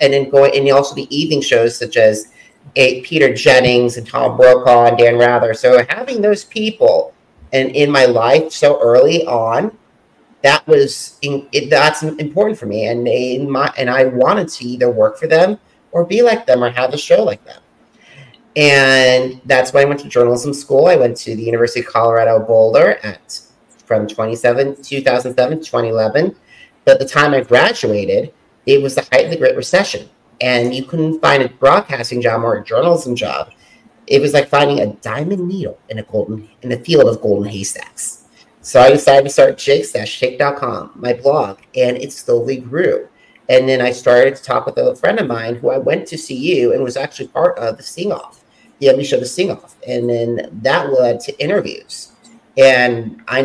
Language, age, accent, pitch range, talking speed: English, 30-49, American, 120-165 Hz, 190 wpm